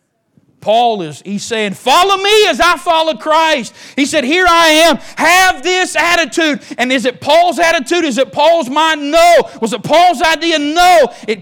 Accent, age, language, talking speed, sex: American, 40-59, English, 175 wpm, male